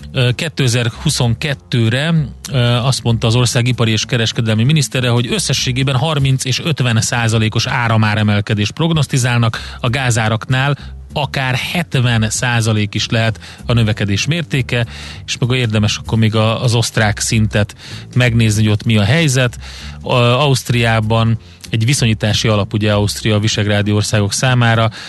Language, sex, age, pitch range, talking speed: Hungarian, male, 30-49, 105-125 Hz, 115 wpm